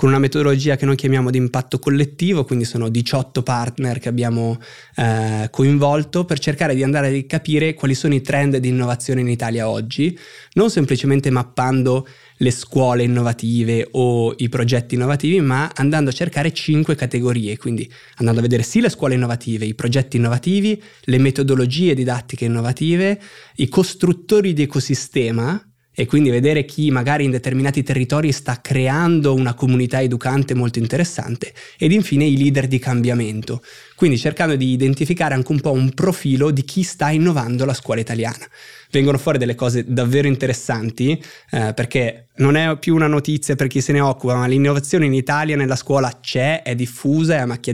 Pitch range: 125-150 Hz